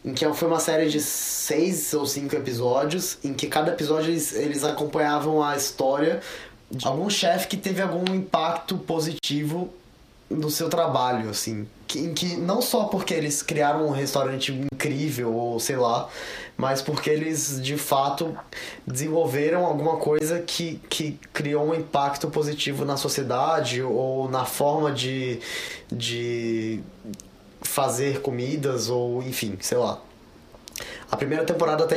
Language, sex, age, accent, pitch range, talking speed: Portuguese, male, 20-39, Brazilian, 125-160 Hz, 140 wpm